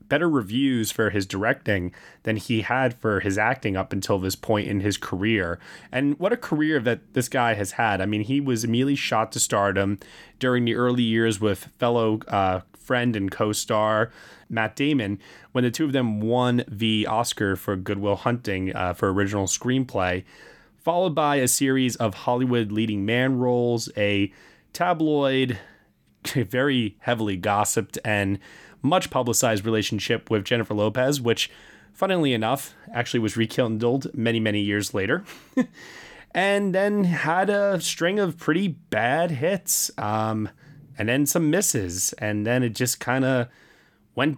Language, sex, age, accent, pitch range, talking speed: English, male, 20-39, American, 105-135 Hz, 155 wpm